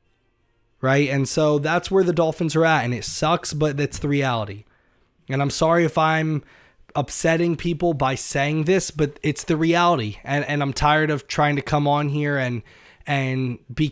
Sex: male